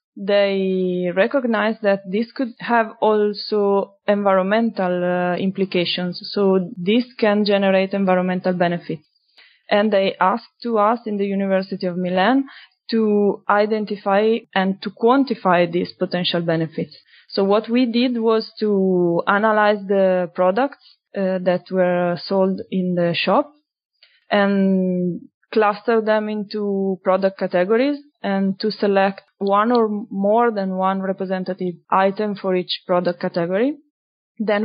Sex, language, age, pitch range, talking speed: female, English, 20-39, 185-225 Hz, 125 wpm